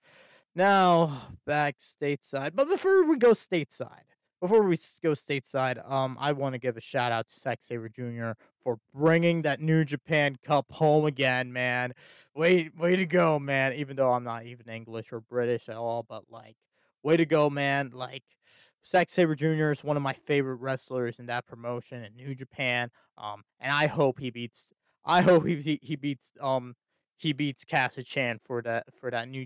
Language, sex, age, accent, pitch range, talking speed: English, male, 20-39, American, 120-150 Hz, 185 wpm